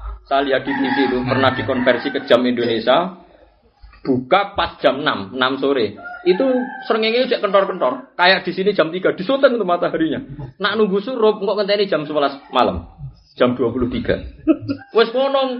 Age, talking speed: 30-49, 145 wpm